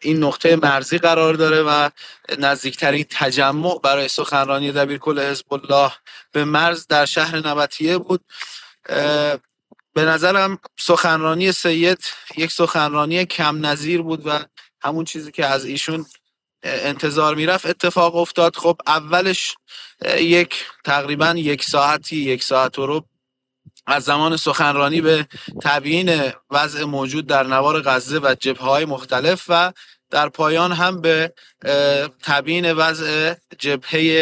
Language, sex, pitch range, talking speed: Persian, male, 140-170 Hz, 125 wpm